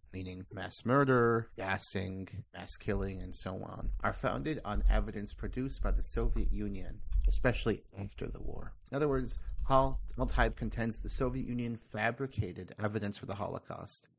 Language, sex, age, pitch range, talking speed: English, male, 30-49, 100-130 Hz, 150 wpm